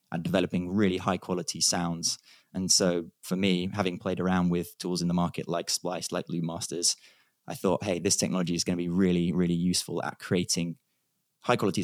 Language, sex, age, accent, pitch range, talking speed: English, male, 20-39, British, 85-95 Hz, 200 wpm